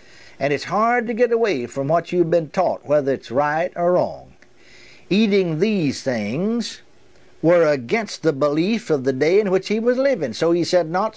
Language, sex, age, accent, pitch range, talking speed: English, male, 60-79, American, 170-215 Hz, 190 wpm